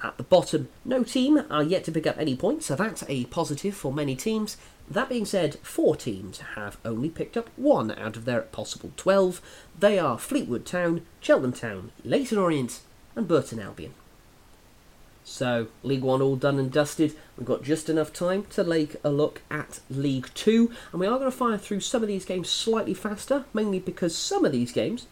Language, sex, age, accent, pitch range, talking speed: English, male, 30-49, British, 135-225 Hz, 200 wpm